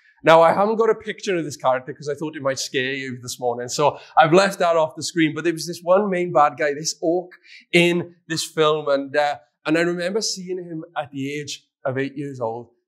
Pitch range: 150-205 Hz